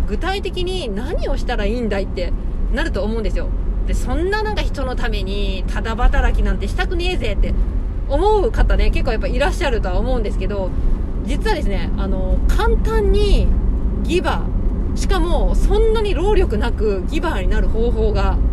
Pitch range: 65-75 Hz